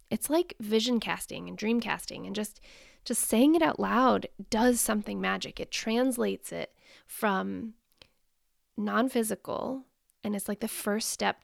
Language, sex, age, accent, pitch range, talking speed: English, female, 20-39, American, 200-245 Hz, 145 wpm